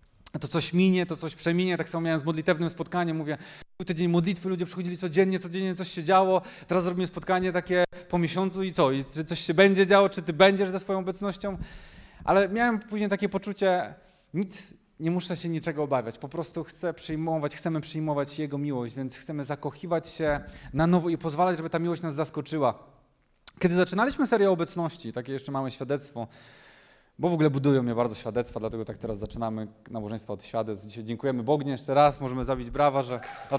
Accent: native